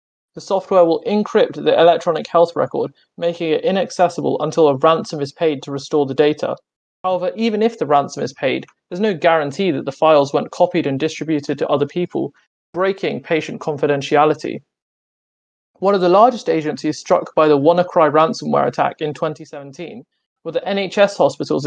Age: 30-49